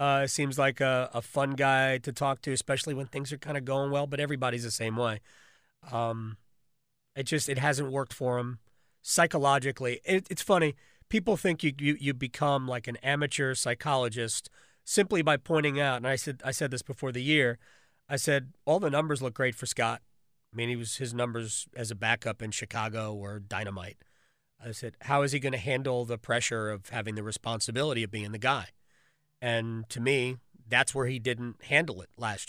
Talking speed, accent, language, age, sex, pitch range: 200 wpm, American, English, 30-49, male, 115-140 Hz